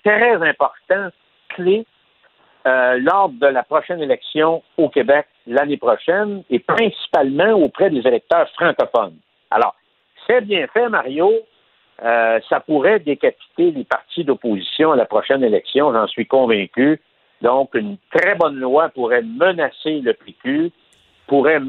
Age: 60-79